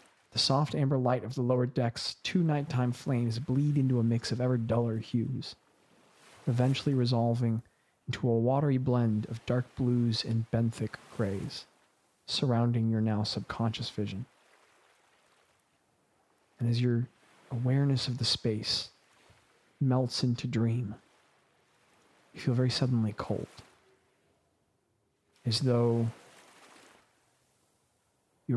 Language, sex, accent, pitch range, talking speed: English, male, American, 115-130 Hz, 115 wpm